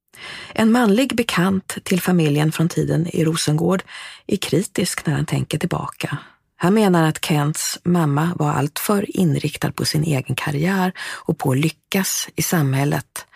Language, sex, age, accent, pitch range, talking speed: English, female, 30-49, Swedish, 140-180 Hz, 150 wpm